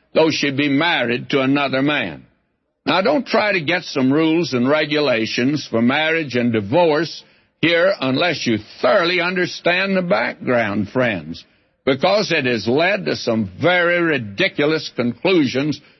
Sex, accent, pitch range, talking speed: male, American, 130-180 Hz, 140 wpm